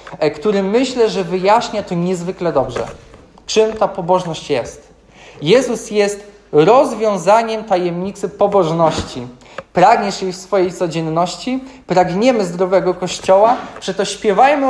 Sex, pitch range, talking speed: male, 170-220 Hz, 105 wpm